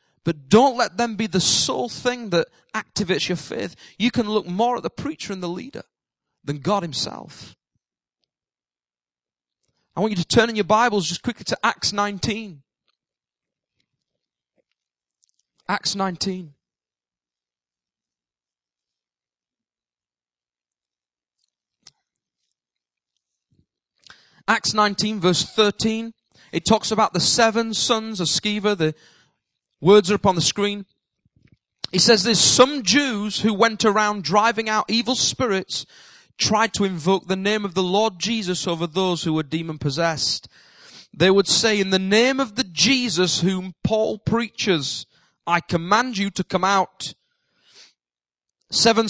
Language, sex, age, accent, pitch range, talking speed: English, male, 20-39, British, 155-220 Hz, 130 wpm